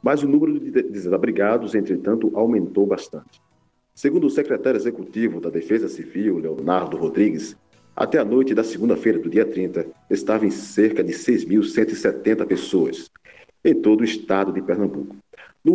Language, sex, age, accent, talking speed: Portuguese, male, 50-69, Brazilian, 135 wpm